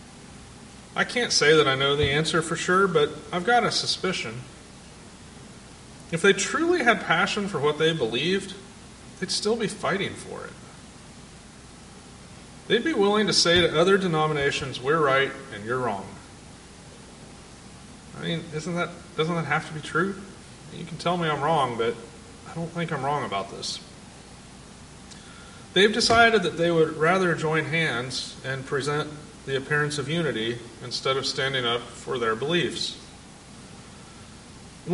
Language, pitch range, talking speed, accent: English, 135-175 Hz, 155 wpm, American